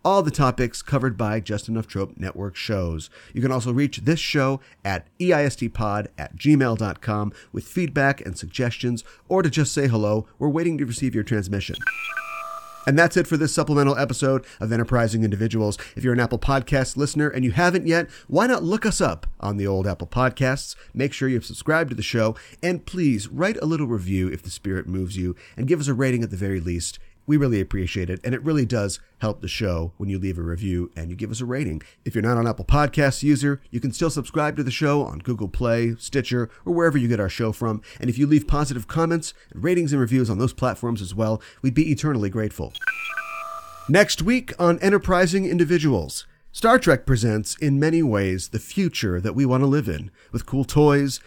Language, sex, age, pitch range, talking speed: English, male, 40-59, 105-150 Hz, 210 wpm